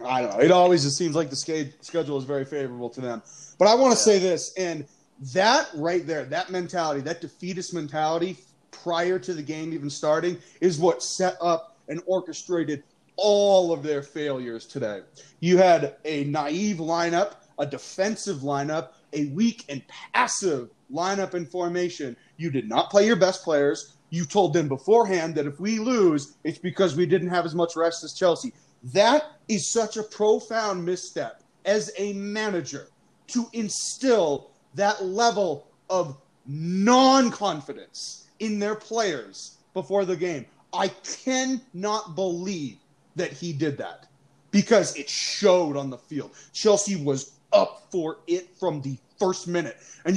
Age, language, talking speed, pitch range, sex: 30-49, English, 155 wpm, 150-200 Hz, male